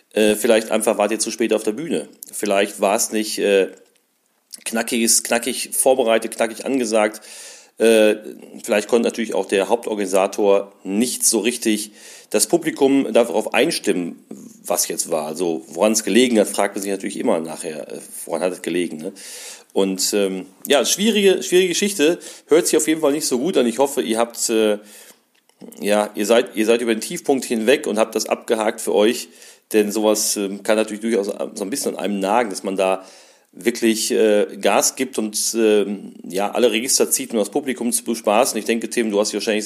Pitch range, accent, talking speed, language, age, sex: 105-125 Hz, German, 185 wpm, German, 40-59, male